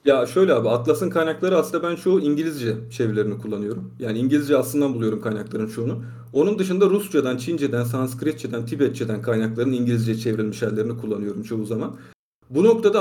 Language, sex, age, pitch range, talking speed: Turkish, male, 40-59, 115-145 Hz, 150 wpm